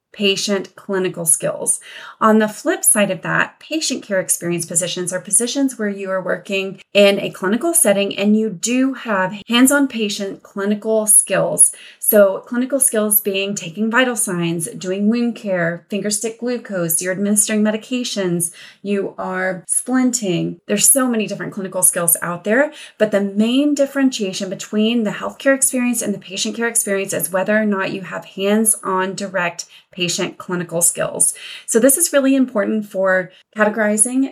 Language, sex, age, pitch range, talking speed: English, female, 30-49, 190-240 Hz, 160 wpm